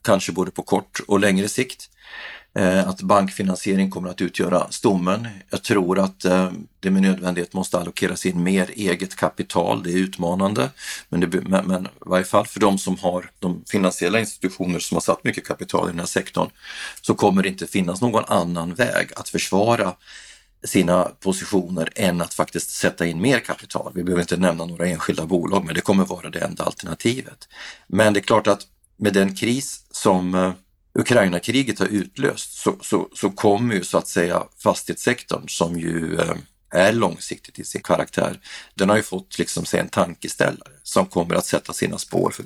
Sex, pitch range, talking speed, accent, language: male, 90-100 Hz, 185 wpm, native, Swedish